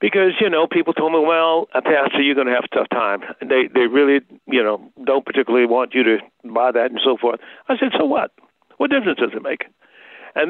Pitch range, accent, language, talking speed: 140-205 Hz, American, English, 240 wpm